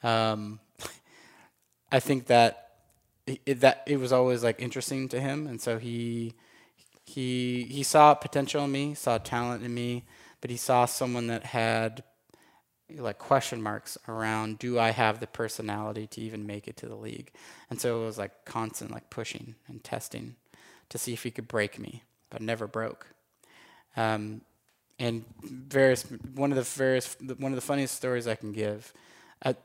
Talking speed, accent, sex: 170 wpm, American, male